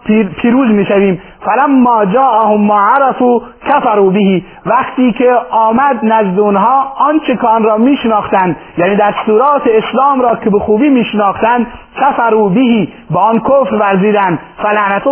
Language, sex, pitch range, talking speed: Persian, male, 200-240 Hz, 125 wpm